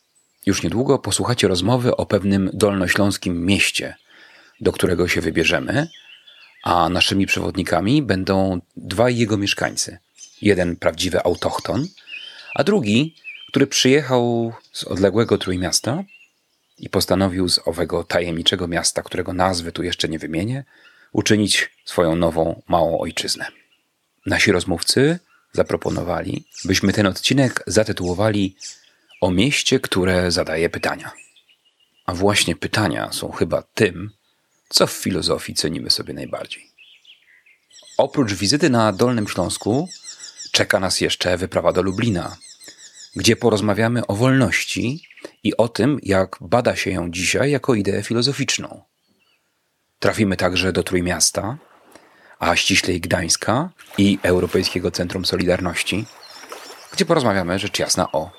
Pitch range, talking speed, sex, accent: 90-115 Hz, 115 wpm, male, native